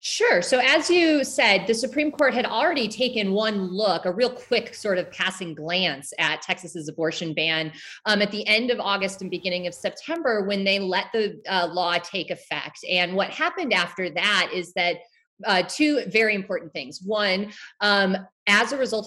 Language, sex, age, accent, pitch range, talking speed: English, female, 30-49, American, 180-230 Hz, 185 wpm